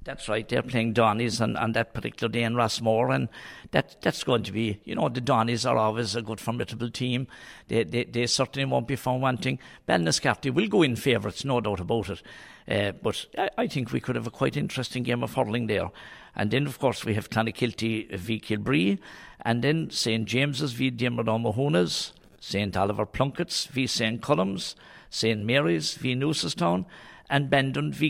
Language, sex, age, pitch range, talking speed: English, male, 60-79, 110-135 Hz, 190 wpm